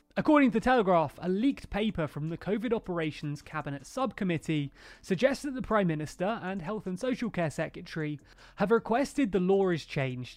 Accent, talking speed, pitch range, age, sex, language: British, 170 wpm, 155-235 Hz, 30-49, male, English